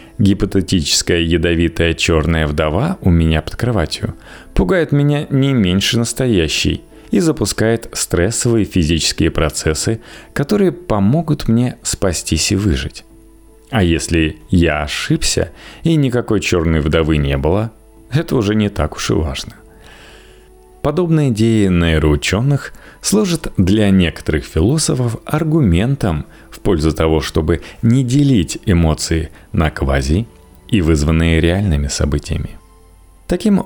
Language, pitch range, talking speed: Russian, 80-115 Hz, 110 wpm